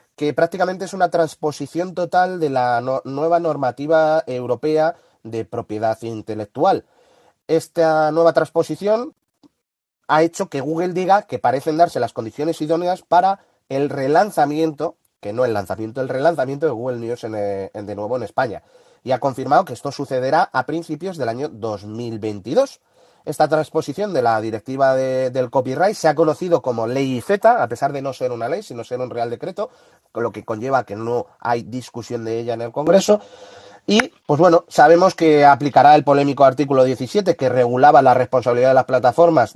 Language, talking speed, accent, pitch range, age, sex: Spanish, 170 wpm, Spanish, 125-165 Hz, 30-49, male